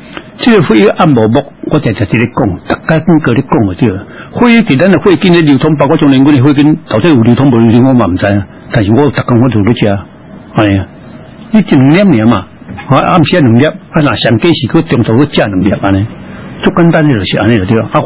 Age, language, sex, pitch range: 60-79, Chinese, male, 105-150 Hz